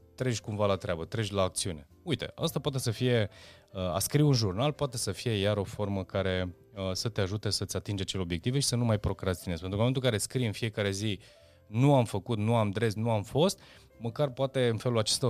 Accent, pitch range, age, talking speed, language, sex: native, 95-115 Hz, 20-39, 240 wpm, Romanian, male